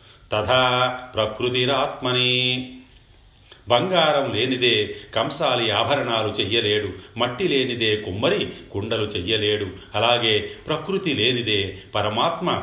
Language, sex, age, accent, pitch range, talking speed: Telugu, male, 40-59, native, 100-125 Hz, 75 wpm